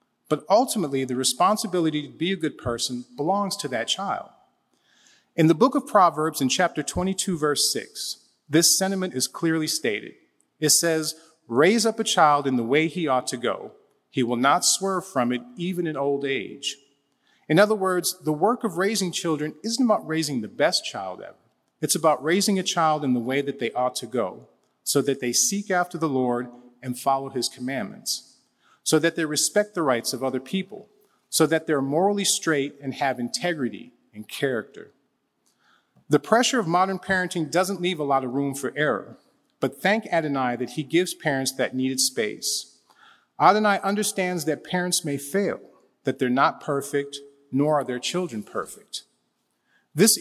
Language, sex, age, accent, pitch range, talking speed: English, male, 40-59, American, 135-185 Hz, 175 wpm